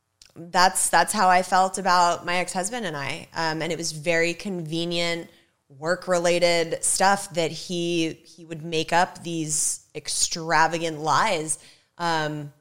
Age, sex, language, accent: 20-39, female, English, American